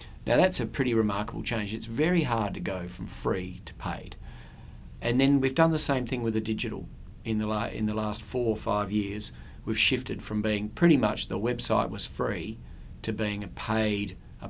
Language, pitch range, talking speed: English, 100-115 Hz, 205 wpm